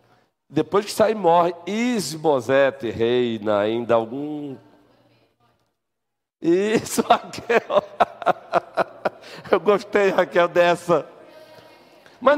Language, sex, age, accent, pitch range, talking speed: Portuguese, male, 60-79, Brazilian, 205-245 Hz, 80 wpm